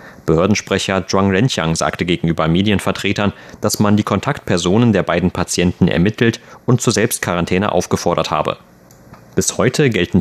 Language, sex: German, male